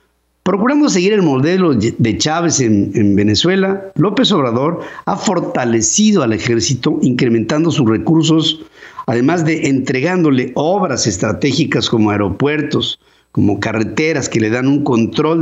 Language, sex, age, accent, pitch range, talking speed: Spanish, male, 50-69, Mexican, 115-175 Hz, 125 wpm